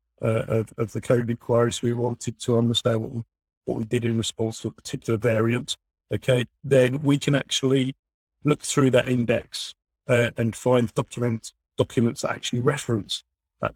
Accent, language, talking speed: British, English, 170 wpm